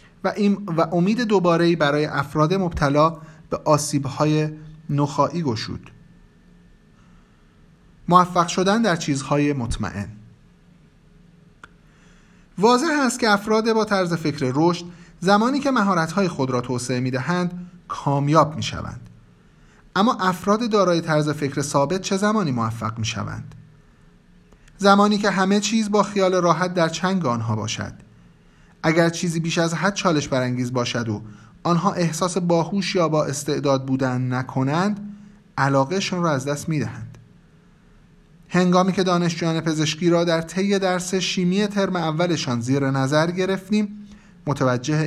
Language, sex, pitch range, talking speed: Persian, male, 140-190 Hz, 120 wpm